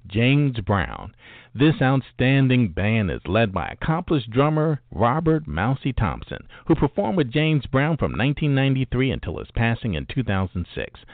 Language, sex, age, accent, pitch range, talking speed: English, male, 50-69, American, 115-150 Hz, 135 wpm